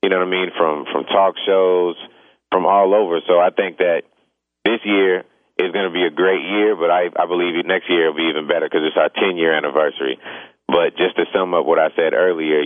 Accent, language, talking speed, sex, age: American, English, 230 wpm, male, 30-49